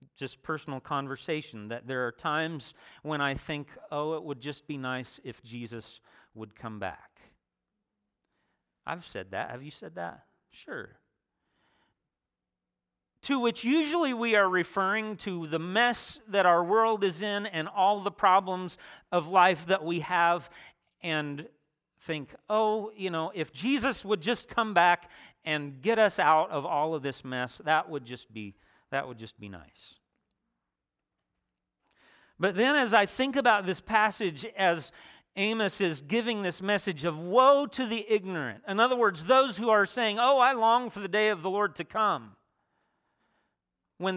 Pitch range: 145-220 Hz